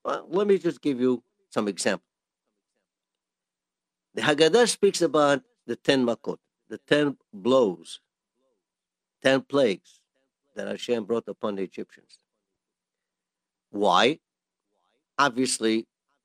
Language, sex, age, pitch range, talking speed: English, male, 60-79, 125-195 Hz, 100 wpm